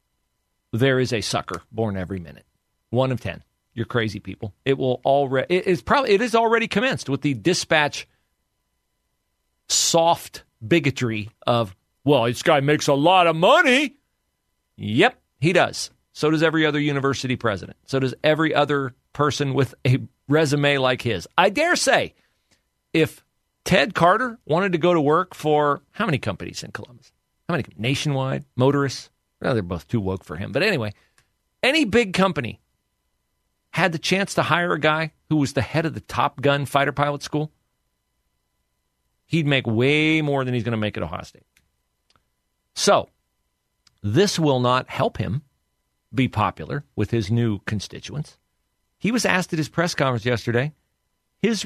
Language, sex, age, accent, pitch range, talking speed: English, male, 40-59, American, 105-155 Hz, 165 wpm